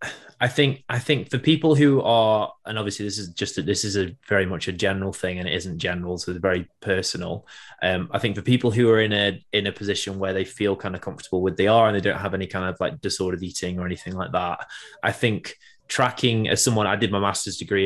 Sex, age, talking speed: male, 20-39, 250 wpm